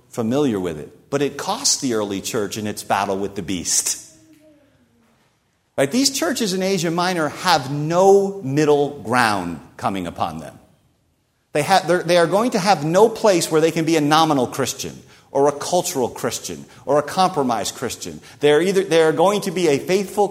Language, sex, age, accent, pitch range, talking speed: English, male, 50-69, American, 135-190 Hz, 170 wpm